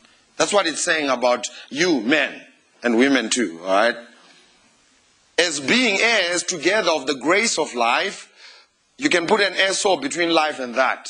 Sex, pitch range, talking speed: male, 160-215 Hz, 160 wpm